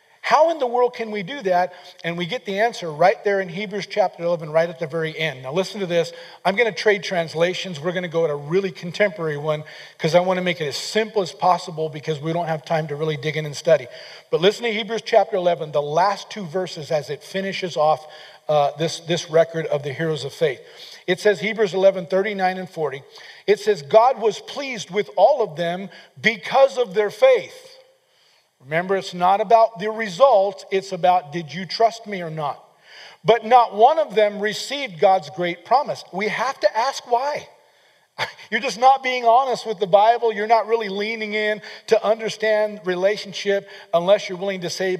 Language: English